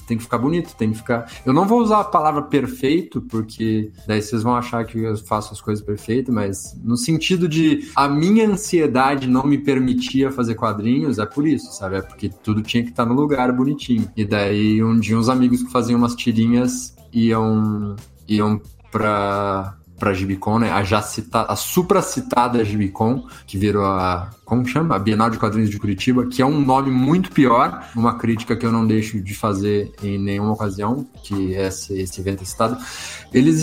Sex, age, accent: male, 20-39, Brazilian